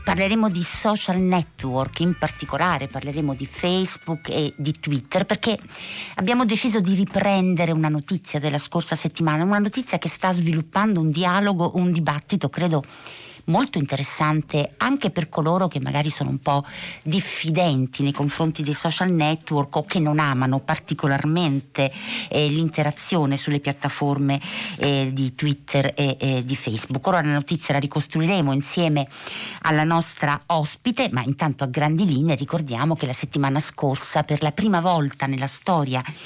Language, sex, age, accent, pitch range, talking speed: Italian, female, 50-69, native, 140-175 Hz, 145 wpm